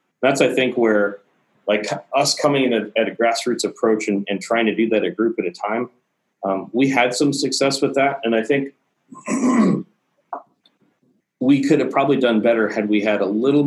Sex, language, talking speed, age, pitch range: male, English, 200 wpm, 30-49, 105-130 Hz